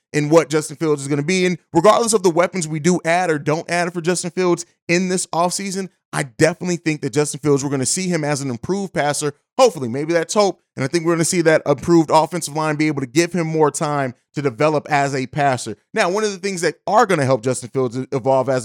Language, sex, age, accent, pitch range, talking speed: English, male, 30-49, American, 155-195 Hz, 260 wpm